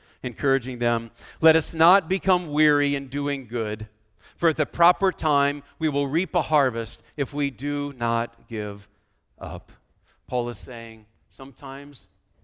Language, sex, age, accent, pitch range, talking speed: English, male, 50-69, American, 105-145 Hz, 145 wpm